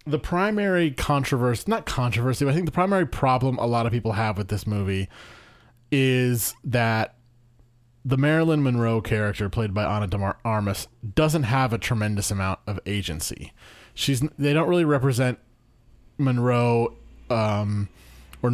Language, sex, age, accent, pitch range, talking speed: English, male, 30-49, American, 110-145 Hz, 140 wpm